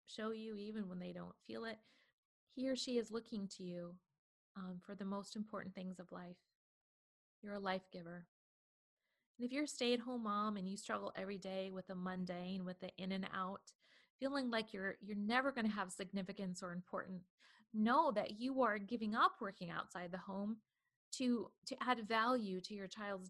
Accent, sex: American, female